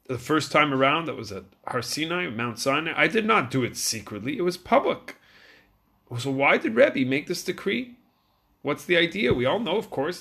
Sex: male